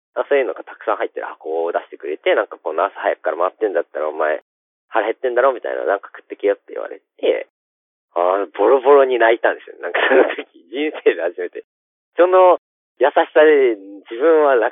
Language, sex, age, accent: Japanese, male, 40-59, native